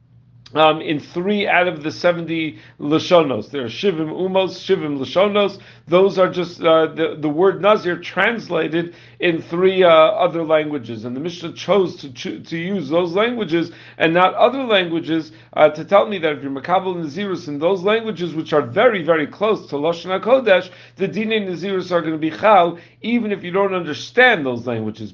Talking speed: 185 wpm